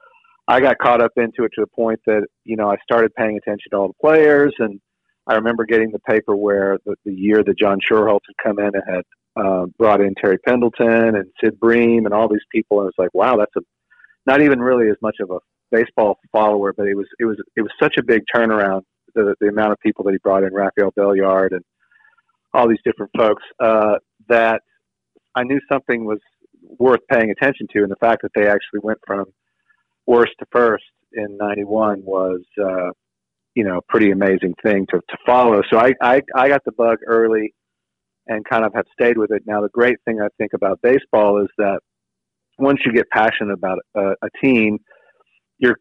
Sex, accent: male, American